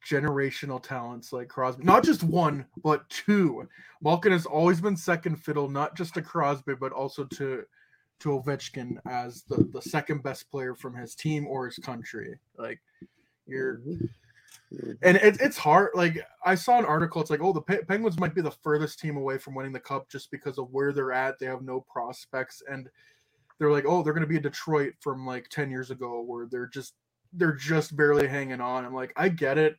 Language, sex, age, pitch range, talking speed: English, male, 20-39, 130-155 Hz, 200 wpm